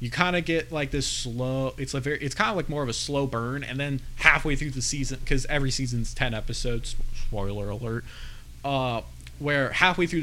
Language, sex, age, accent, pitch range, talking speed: English, male, 20-39, American, 115-135 Hz, 210 wpm